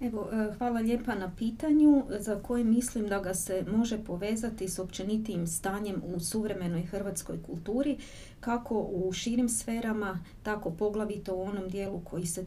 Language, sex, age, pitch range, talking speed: Croatian, female, 30-49, 185-220 Hz, 150 wpm